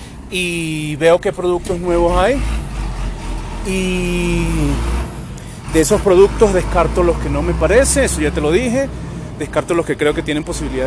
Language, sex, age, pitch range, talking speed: Spanish, male, 30-49, 150-205 Hz, 155 wpm